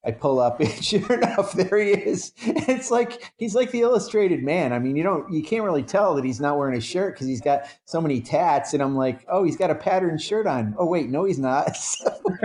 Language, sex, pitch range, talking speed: English, male, 140-210 Hz, 250 wpm